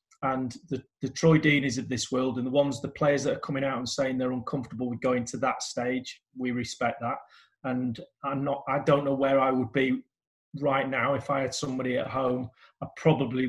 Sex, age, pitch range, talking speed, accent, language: male, 30-49, 130-150 Hz, 225 wpm, British, English